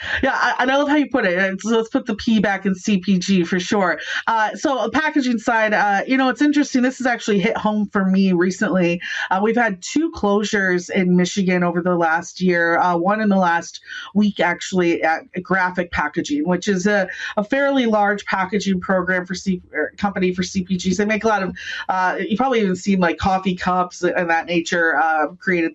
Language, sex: English, female